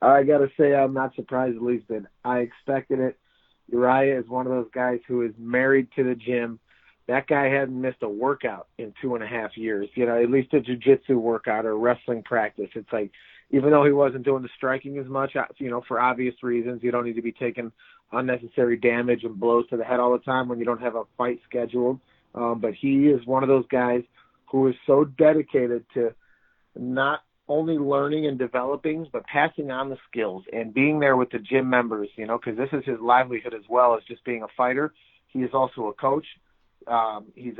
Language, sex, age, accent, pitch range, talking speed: English, male, 30-49, American, 115-135 Hz, 220 wpm